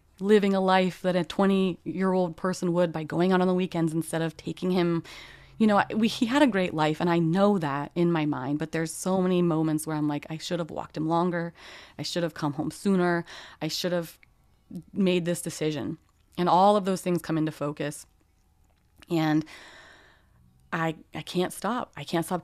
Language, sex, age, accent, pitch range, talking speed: English, female, 30-49, American, 155-185 Hz, 205 wpm